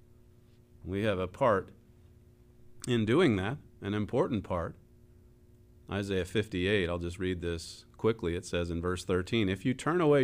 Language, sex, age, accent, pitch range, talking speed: English, male, 40-59, American, 100-120 Hz, 150 wpm